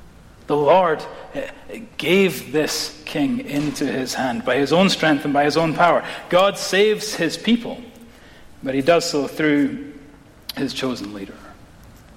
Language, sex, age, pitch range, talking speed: English, male, 30-49, 145-185 Hz, 145 wpm